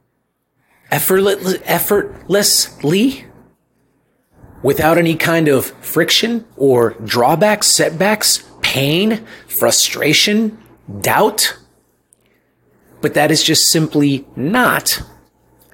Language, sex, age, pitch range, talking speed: English, male, 30-49, 125-165 Hz, 70 wpm